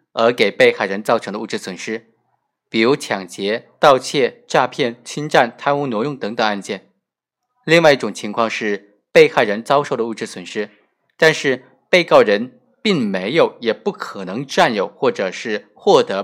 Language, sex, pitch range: Chinese, male, 115-155 Hz